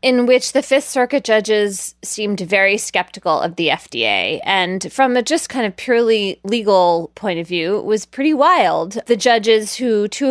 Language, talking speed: English, 180 wpm